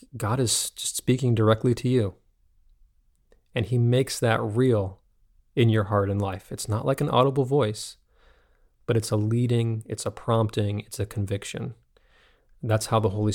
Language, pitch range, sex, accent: English, 105-125 Hz, male, American